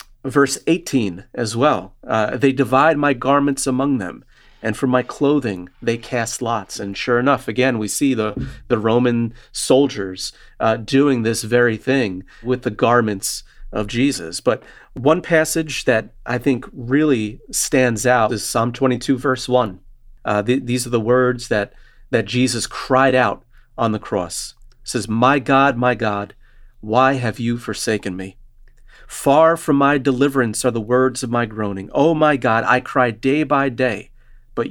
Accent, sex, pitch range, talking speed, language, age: American, male, 110-130 Hz, 165 wpm, English, 40-59